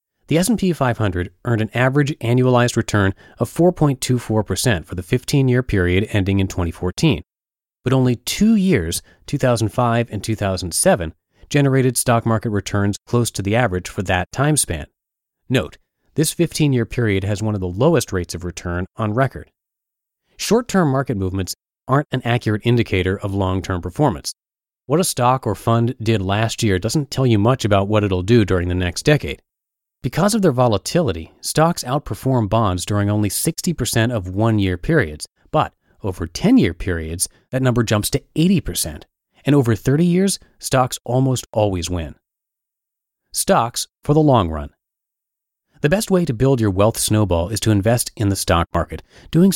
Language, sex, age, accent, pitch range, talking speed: English, male, 30-49, American, 95-135 Hz, 160 wpm